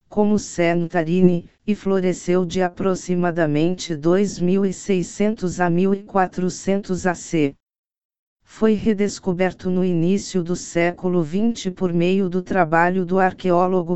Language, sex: Portuguese, female